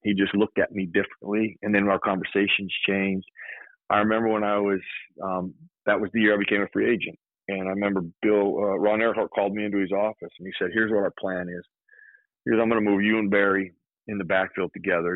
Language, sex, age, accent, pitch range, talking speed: English, male, 40-59, American, 95-115 Hz, 235 wpm